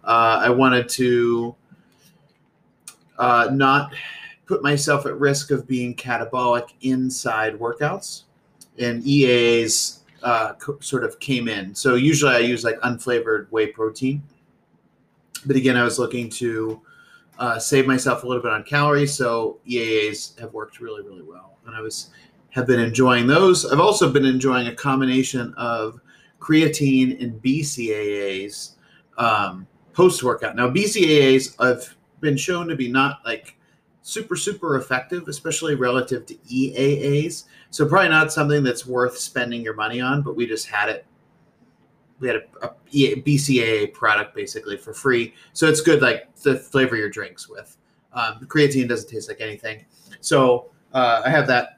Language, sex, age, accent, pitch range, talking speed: English, male, 30-49, American, 120-145 Hz, 155 wpm